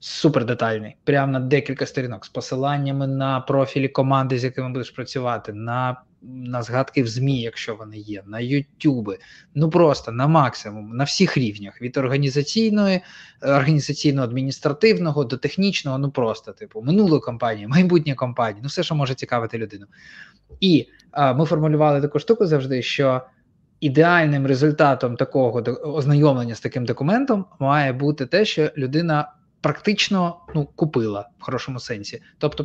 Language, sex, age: Ukrainian, male, 20-39